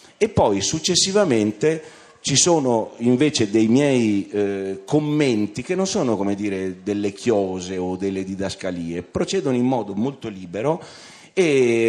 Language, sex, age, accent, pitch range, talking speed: Italian, male, 30-49, native, 95-125 Hz, 125 wpm